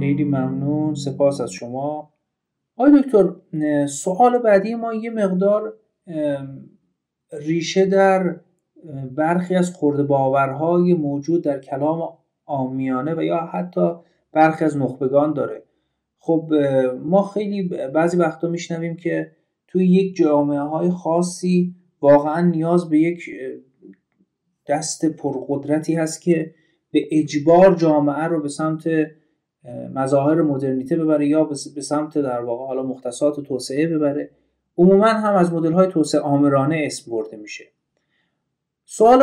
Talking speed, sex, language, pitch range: 115 wpm, male, Persian, 140-180 Hz